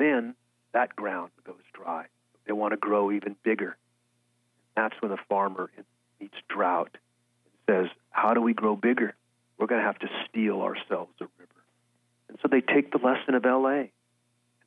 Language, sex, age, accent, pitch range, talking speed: English, male, 40-59, American, 105-120 Hz, 170 wpm